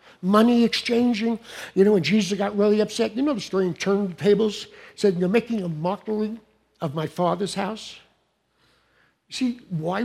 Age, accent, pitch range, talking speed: 60-79, American, 170-225 Hz, 165 wpm